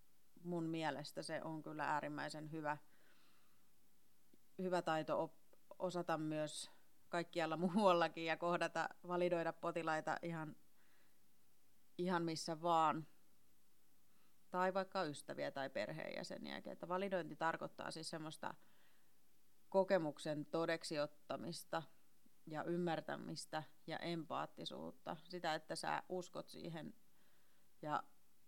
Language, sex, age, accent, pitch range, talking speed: Finnish, female, 30-49, native, 155-175 Hz, 95 wpm